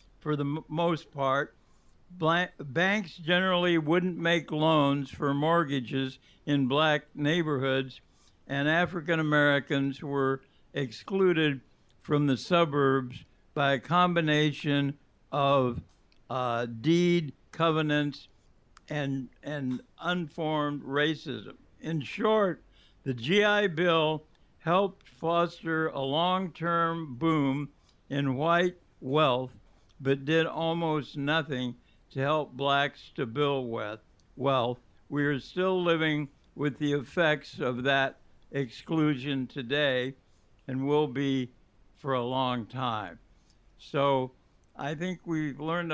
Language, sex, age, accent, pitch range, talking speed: English, male, 60-79, American, 135-165 Hz, 105 wpm